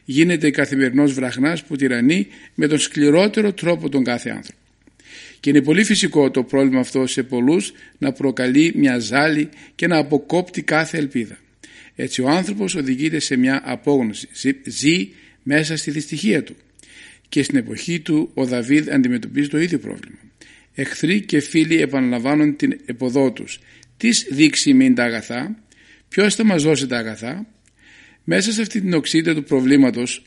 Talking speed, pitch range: 155 wpm, 135-175 Hz